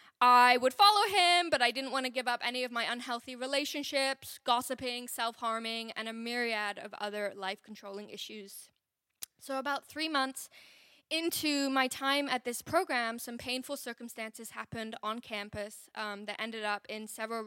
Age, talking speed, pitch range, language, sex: 10-29, 160 wpm, 225-275 Hz, English, female